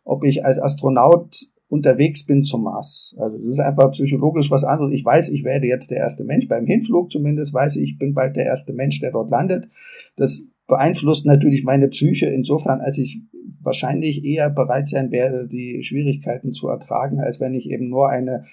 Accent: German